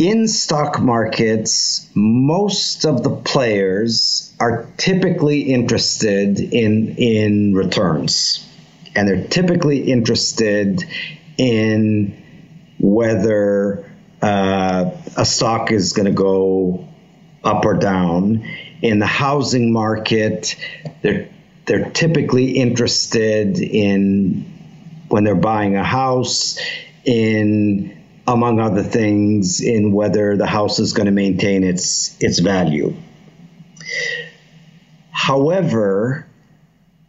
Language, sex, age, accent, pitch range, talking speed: English, male, 50-69, American, 105-160 Hz, 95 wpm